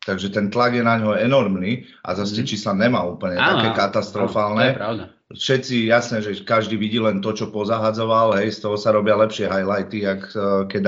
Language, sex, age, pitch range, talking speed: Slovak, male, 40-59, 100-120 Hz, 180 wpm